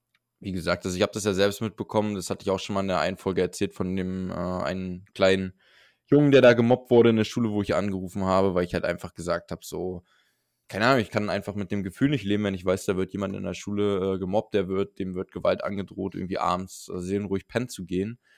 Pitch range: 95-105 Hz